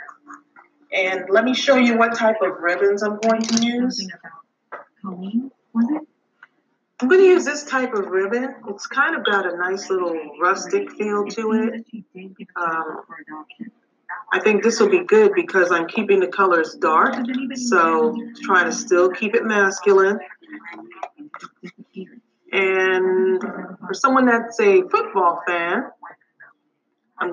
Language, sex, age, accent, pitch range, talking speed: English, female, 30-49, American, 190-270 Hz, 130 wpm